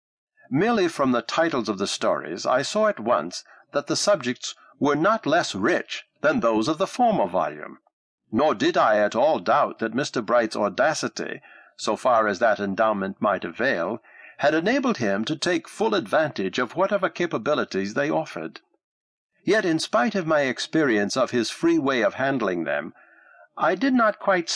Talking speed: 170 wpm